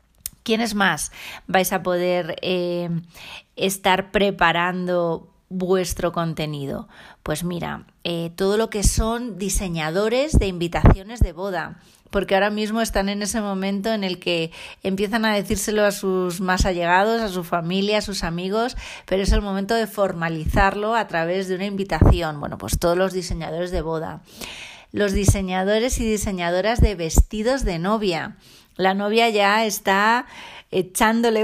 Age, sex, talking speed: 30-49, female, 145 wpm